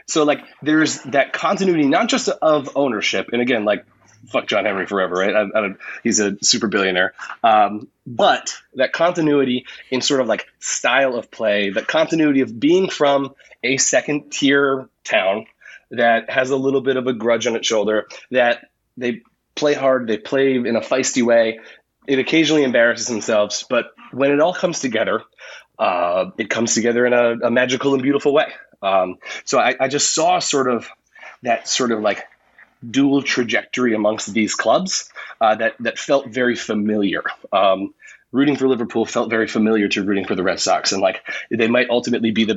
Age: 30-49